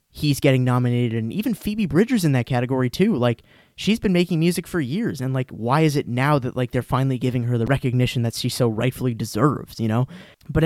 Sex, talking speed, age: male, 225 wpm, 20-39